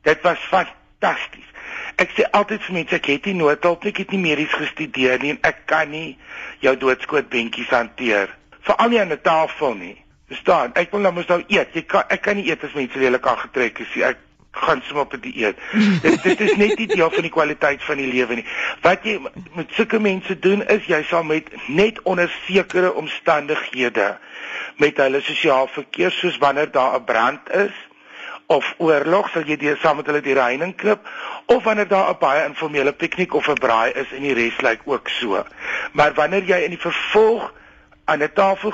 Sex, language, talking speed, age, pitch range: male, Dutch, 195 wpm, 60-79, 145-190 Hz